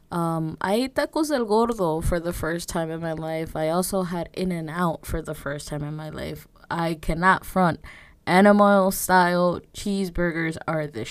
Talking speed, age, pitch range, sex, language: 185 wpm, 20-39, 155-185 Hz, female, English